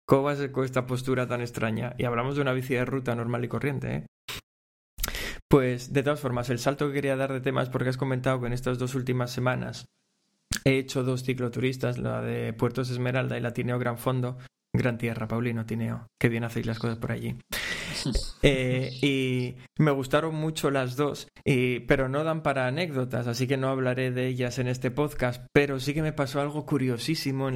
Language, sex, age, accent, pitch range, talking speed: Spanish, male, 20-39, Spanish, 125-135 Hz, 200 wpm